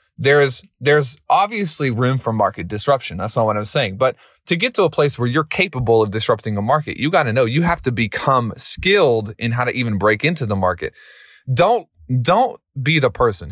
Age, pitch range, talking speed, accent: 30-49, 110-140 Hz, 210 wpm, American